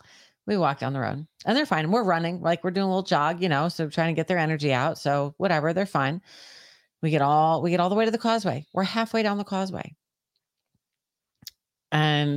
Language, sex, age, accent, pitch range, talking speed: English, female, 30-49, American, 140-185 Hz, 225 wpm